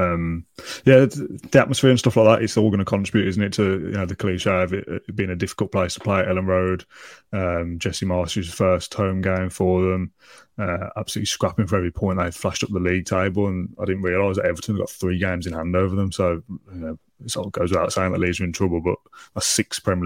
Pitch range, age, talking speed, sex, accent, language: 90-105 Hz, 20-39, 240 wpm, male, British, English